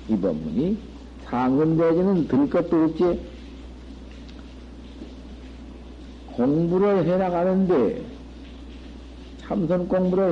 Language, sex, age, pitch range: Korean, male, 60-79, 170-215 Hz